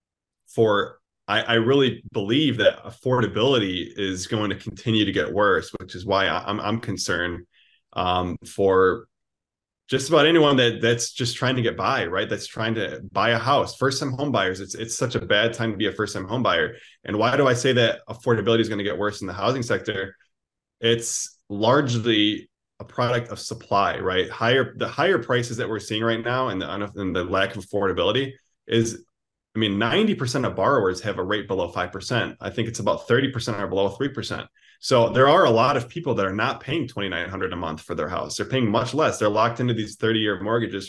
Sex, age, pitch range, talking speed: male, 20-39, 100-125 Hz, 205 wpm